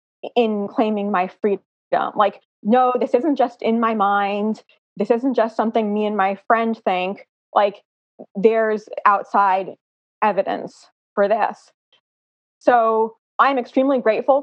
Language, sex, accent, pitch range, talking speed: English, female, American, 195-245 Hz, 135 wpm